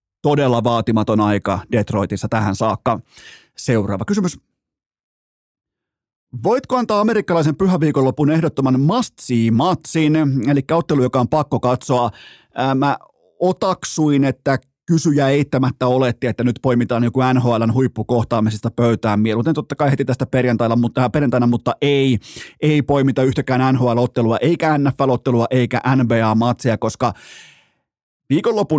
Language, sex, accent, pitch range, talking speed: Finnish, male, native, 120-150 Hz, 115 wpm